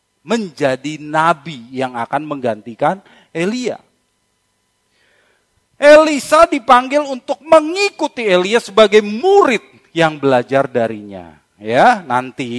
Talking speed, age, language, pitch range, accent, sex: 85 wpm, 40-59, Indonesian, 125-205 Hz, native, male